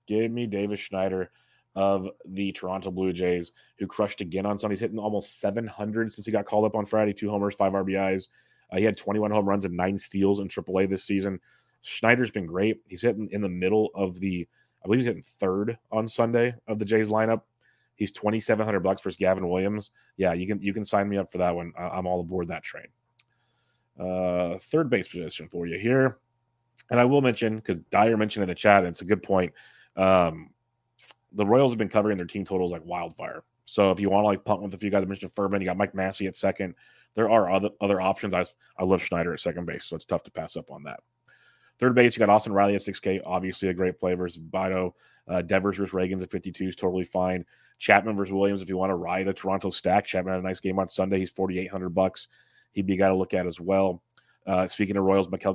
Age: 30-49